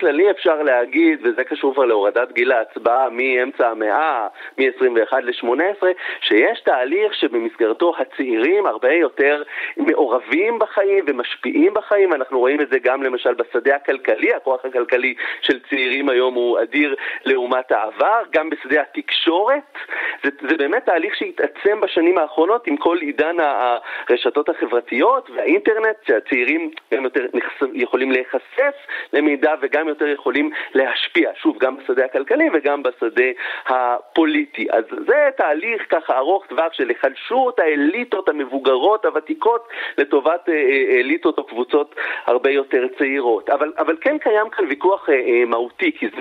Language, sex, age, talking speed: Hebrew, male, 30-49, 130 wpm